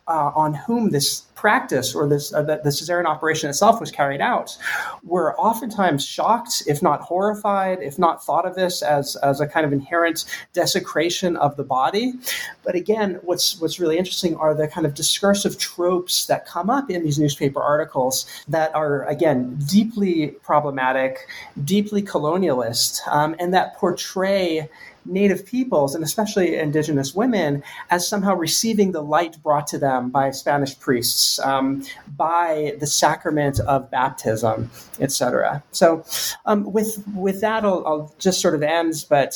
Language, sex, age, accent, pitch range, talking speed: English, male, 30-49, American, 145-190 Hz, 155 wpm